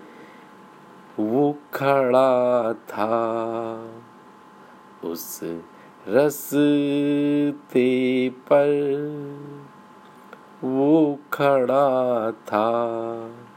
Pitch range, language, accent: 120-145 Hz, Hindi, native